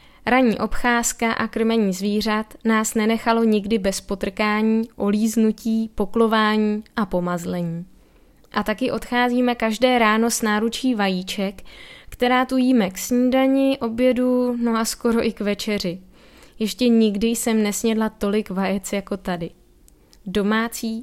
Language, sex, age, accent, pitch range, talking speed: Czech, female, 20-39, native, 200-240 Hz, 125 wpm